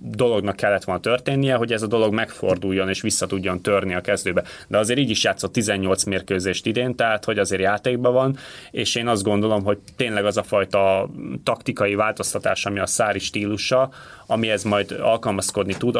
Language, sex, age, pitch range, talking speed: Hungarian, male, 30-49, 95-115 Hz, 180 wpm